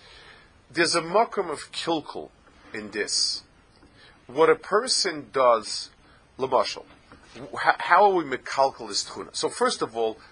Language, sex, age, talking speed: English, male, 40-59, 130 wpm